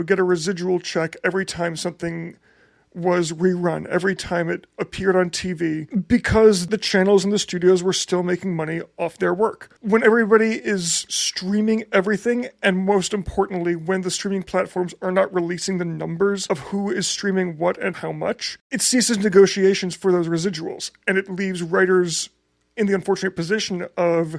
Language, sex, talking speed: English, male, 165 wpm